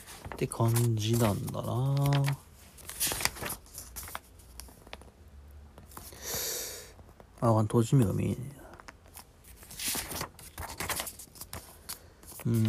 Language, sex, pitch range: Japanese, male, 85-125 Hz